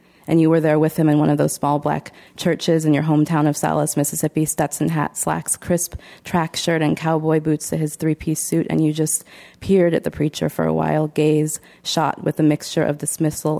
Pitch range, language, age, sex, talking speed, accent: 145-160 Hz, English, 20-39, female, 215 wpm, American